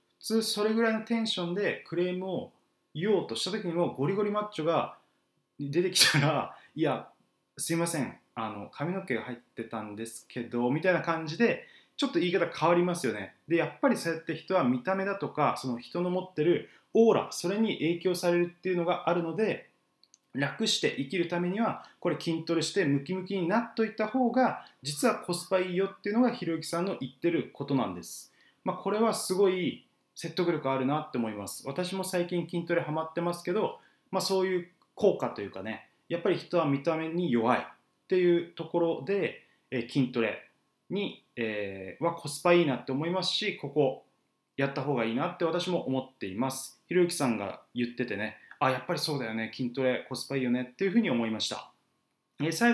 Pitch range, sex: 140-185 Hz, male